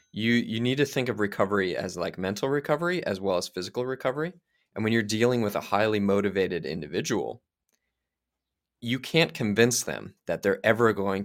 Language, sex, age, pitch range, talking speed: English, male, 20-39, 85-115 Hz, 175 wpm